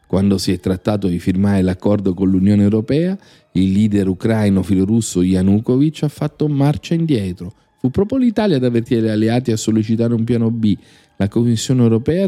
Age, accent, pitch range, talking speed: 40-59, native, 95-120 Hz, 165 wpm